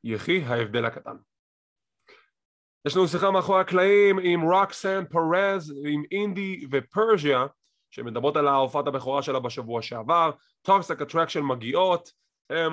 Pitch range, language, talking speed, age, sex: 135-185 Hz, English, 110 wpm, 30-49, male